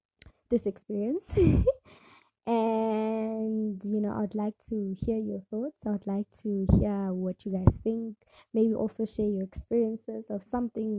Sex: female